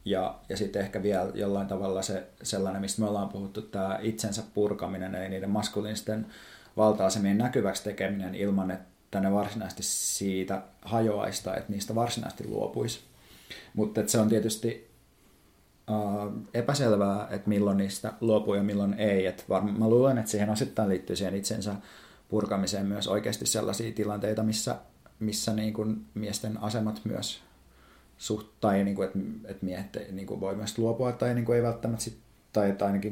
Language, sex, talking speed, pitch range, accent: Finnish, male, 155 wpm, 100-115 Hz, native